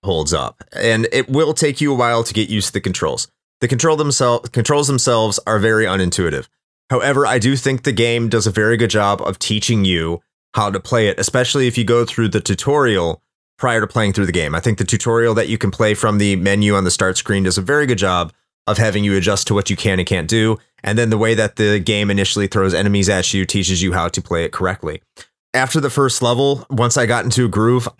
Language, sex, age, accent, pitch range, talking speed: English, male, 30-49, American, 100-125 Hz, 240 wpm